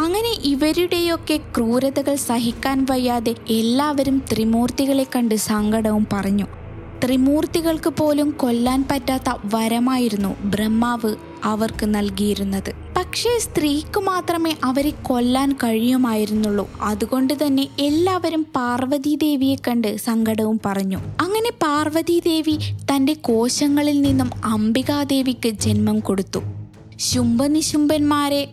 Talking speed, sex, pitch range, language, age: 85 wpm, female, 225-290 Hz, Malayalam, 20-39